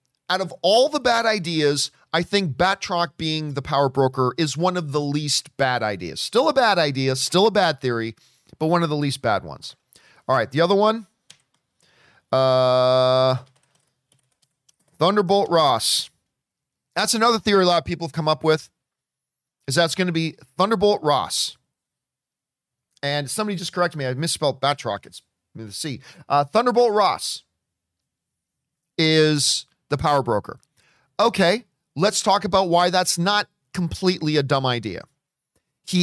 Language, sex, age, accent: English, male, 40-59, American